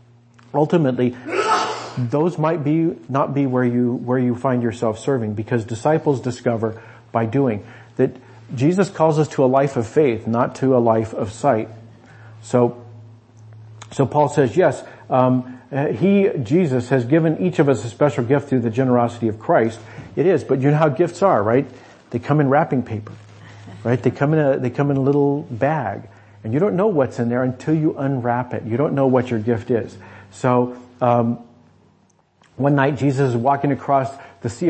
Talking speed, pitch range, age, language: 185 wpm, 120-145 Hz, 50-69, English